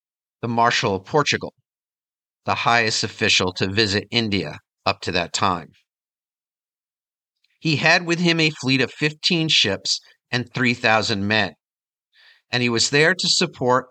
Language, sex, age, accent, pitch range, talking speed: English, male, 50-69, American, 105-140 Hz, 140 wpm